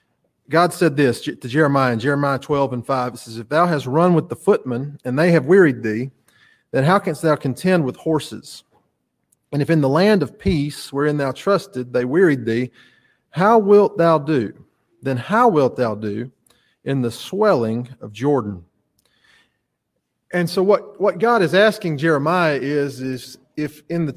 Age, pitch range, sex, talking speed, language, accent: 30-49, 125-165 Hz, male, 175 wpm, English, American